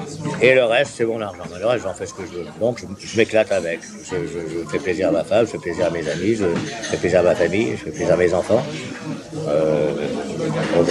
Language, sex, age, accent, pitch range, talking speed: French, male, 50-69, French, 115-150 Hz, 255 wpm